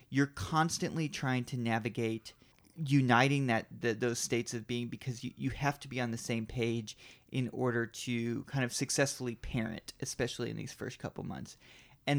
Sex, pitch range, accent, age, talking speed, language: male, 120-135 Hz, American, 30-49, 175 wpm, English